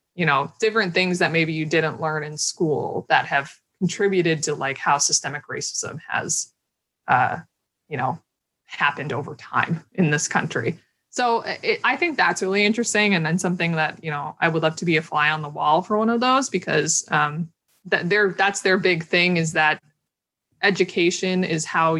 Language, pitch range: English, 155-185 Hz